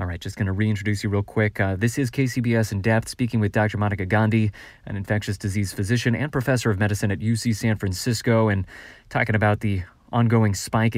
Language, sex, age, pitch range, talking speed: English, male, 20-39, 105-130 Hz, 210 wpm